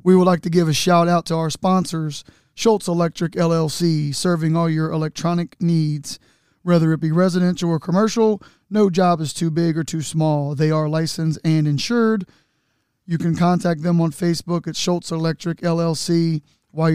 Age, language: 30-49, English